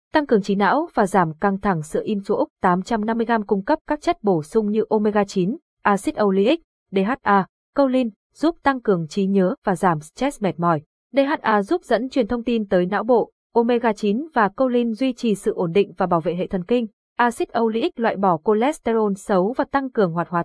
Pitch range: 195-255 Hz